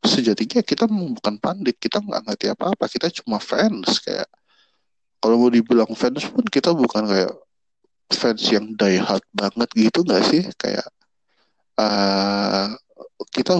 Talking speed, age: 130 wpm, 20-39